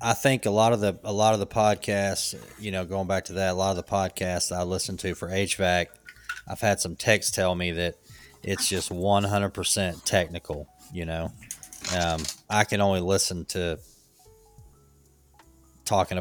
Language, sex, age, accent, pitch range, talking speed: English, male, 30-49, American, 85-105 Hz, 175 wpm